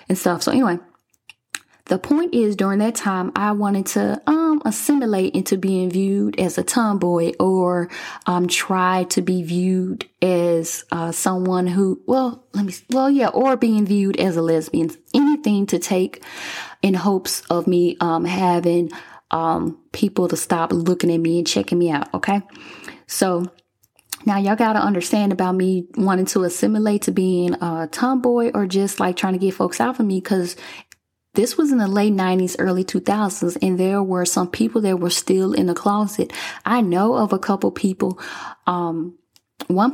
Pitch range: 175-205 Hz